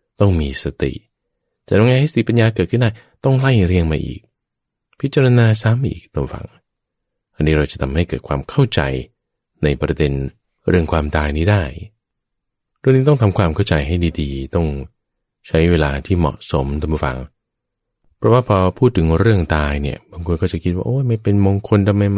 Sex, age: male, 20-39